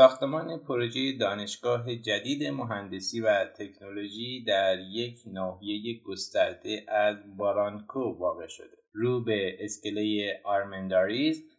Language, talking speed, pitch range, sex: Persian, 100 wpm, 105-140 Hz, male